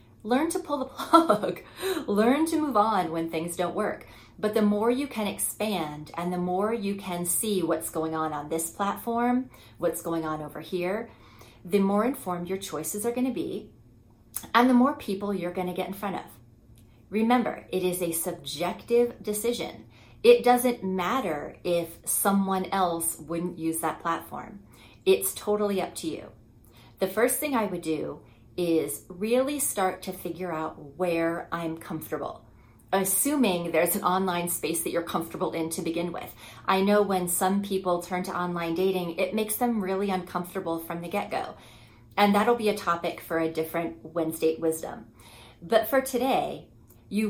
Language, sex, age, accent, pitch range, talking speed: English, female, 30-49, American, 165-210 Hz, 175 wpm